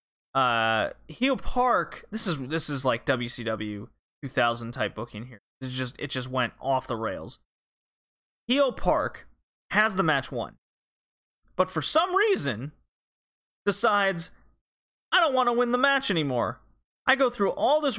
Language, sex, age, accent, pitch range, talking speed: English, male, 30-49, American, 135-225 Hz, 150 wpm